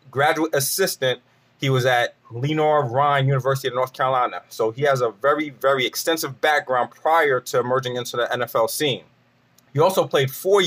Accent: American